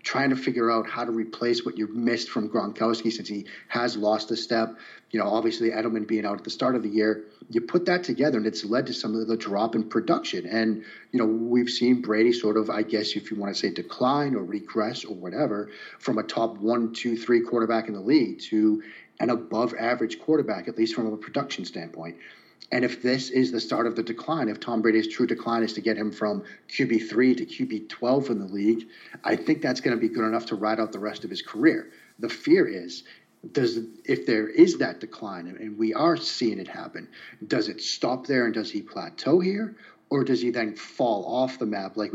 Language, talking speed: English, 225 wpm